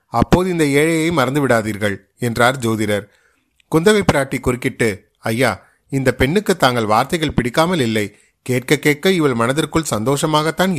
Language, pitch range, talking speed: Tamil, 115-155 Hz, 115 wpm